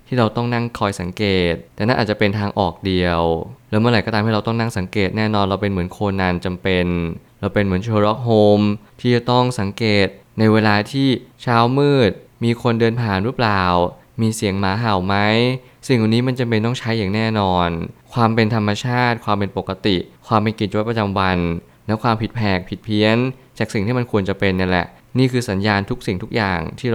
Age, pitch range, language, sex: 20-39, 100-115 Hz, Thai, male